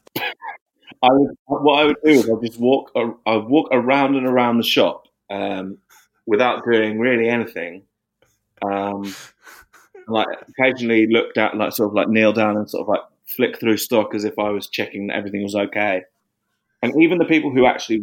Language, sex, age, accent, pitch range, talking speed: English, male, 20-39, British, 100-125 Hz, 185 wpm